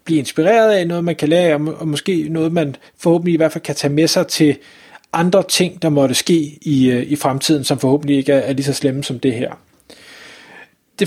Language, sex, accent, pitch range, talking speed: Danish, male, native, 155-195 Hz, 220 wpm